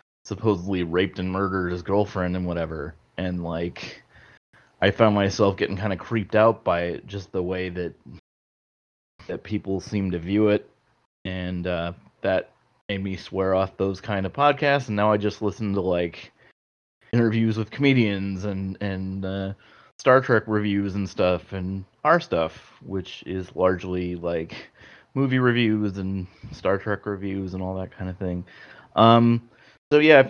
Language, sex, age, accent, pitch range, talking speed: English, male, 30-49, American, 95-110 Hz, 160 wpm